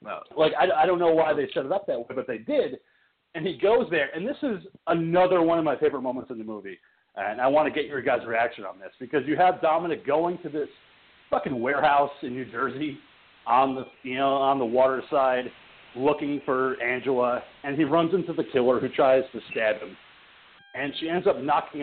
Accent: American